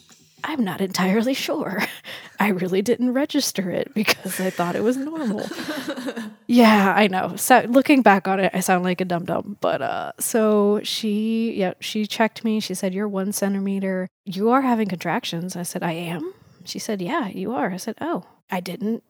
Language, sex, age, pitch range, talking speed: English, female, 20-39, 180-215 Hz, 185 wpm